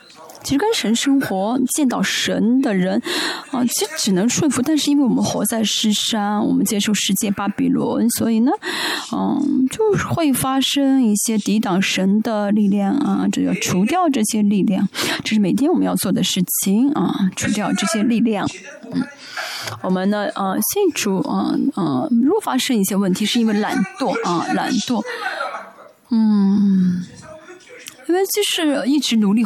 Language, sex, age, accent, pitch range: Chinese, female, 20-39, native, 205-270 Hz